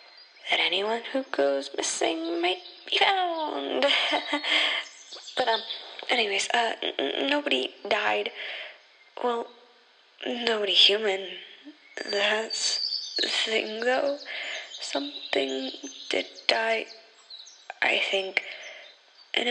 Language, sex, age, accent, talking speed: English, female, 10-29, American, 85 wpm